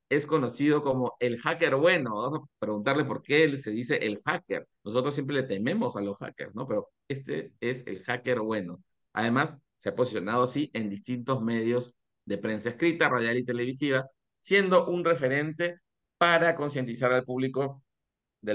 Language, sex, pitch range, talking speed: Spanish, male, 110-140 Hz, 165 wpm